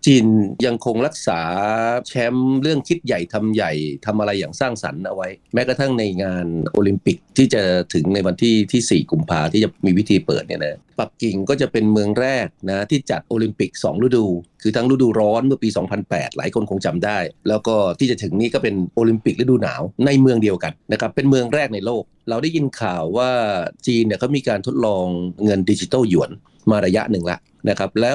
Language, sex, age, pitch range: Thai, male, 30-49, 100-130 Hz